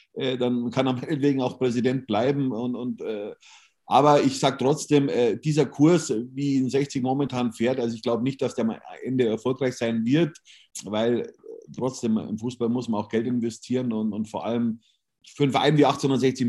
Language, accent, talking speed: German, German, 185 wpm